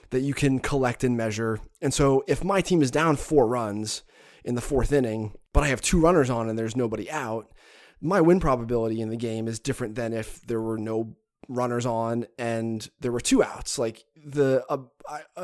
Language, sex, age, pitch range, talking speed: English, male, 20-39, 115-150 Hz, 200 wpm